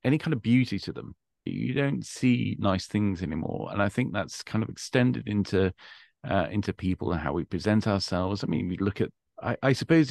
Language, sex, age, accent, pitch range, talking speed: English, male, 40-59, British, 95-120 Hz, 215 wpm